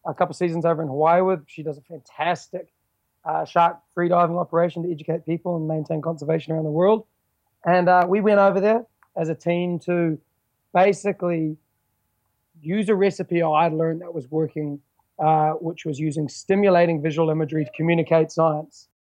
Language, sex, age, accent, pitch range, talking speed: English, male, 20-39, Australian, 155-180 Hz, 175 wpm